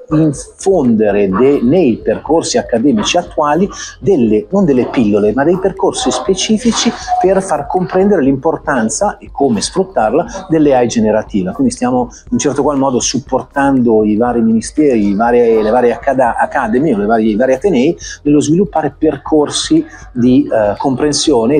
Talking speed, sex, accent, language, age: 145 wpm, male, native, Italian, 40-59